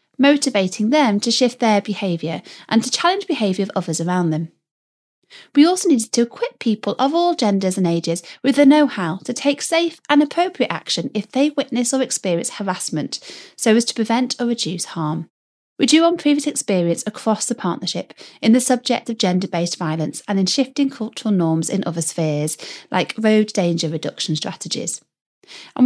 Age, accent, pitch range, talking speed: 30-49, British, 180-280 Hz, 175 wpm